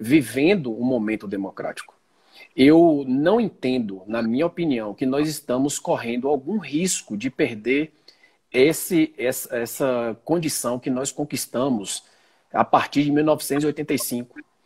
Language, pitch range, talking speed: Portuguese, 115-170 Hz, 120 wpm